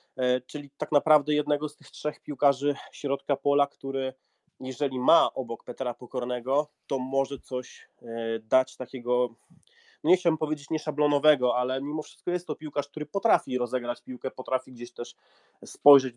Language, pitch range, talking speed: Polish, 120-140 Hz, 150 wpm